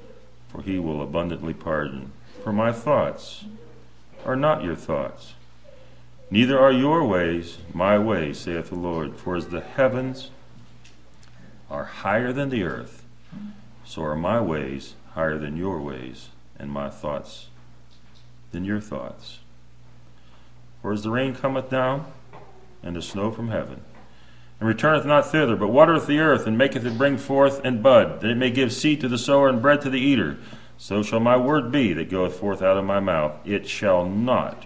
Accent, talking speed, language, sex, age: American, 170 wpm, English, male, 50-69